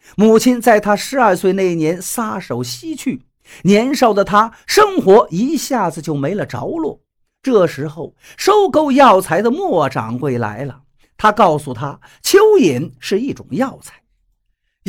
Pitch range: 160-265 Hz